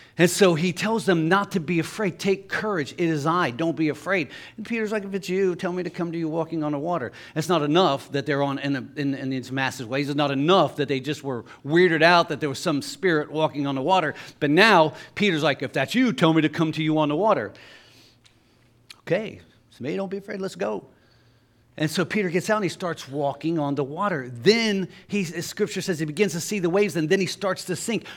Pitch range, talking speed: 125-180 Hz, 245 wpm